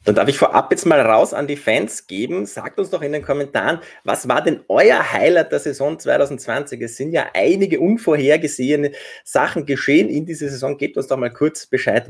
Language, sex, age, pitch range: German, male, 30-49, 125-165 Hz